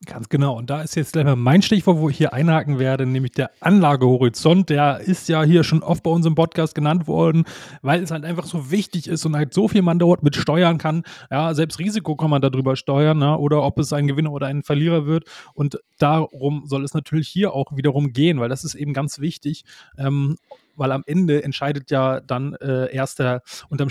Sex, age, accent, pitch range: male, 30-49, German, 140-170 Hz